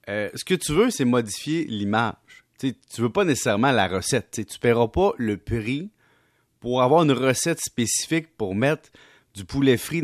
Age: 30-49